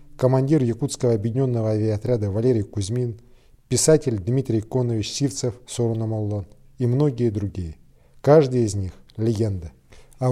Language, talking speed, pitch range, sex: Russian, 120 wpm, 110-135 Hz, male